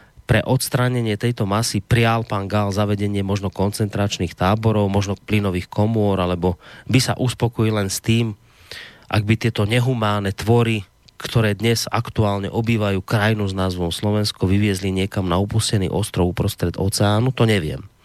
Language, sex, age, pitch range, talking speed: Slovak, male, 30-49, 100-120 Hz, 145 wpm